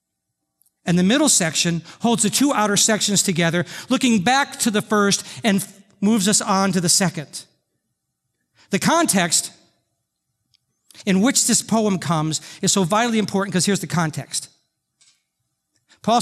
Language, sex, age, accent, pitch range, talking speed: English, male, 40-59, American, 155-210 Hz, 140 wpm